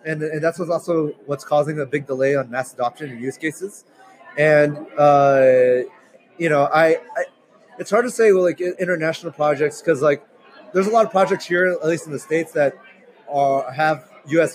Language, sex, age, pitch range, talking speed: English, male, 30-49, 145-170 Hz, 195 wpm